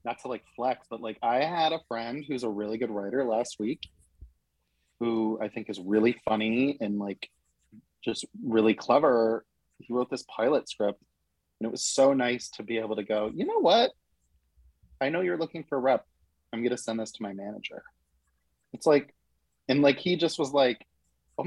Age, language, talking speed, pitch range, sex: 30-49, English, 195 wpm, 75-120 Hz, male